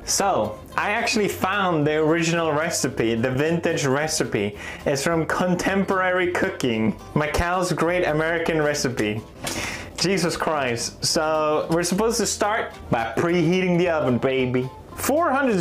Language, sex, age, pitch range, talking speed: English, male, 20-39, 100-165 Hz, 120 wpm